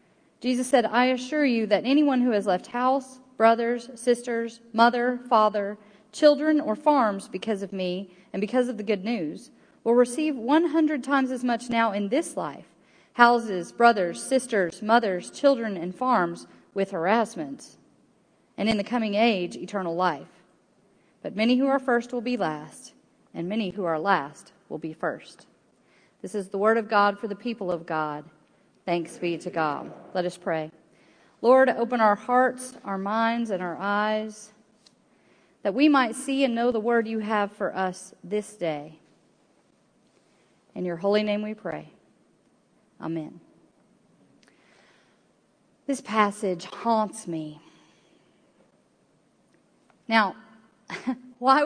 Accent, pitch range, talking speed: American, 195-250 Hz, 145 wpm